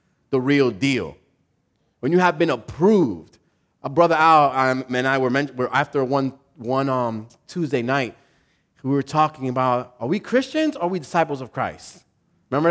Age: 30-49